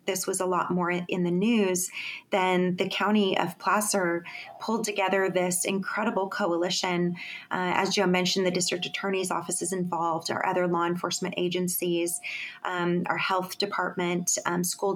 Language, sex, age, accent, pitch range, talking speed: English, female, 30-49, American, 175-195 Hz, 155 wpm